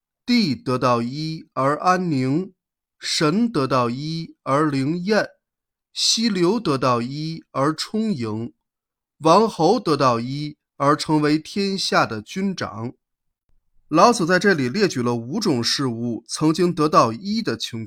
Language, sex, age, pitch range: Chinese, male, 20-39, 130-200 Hz